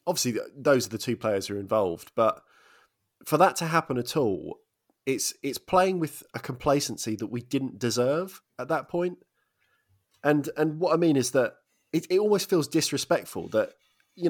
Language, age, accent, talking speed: English, 20-39, British, 180 wpm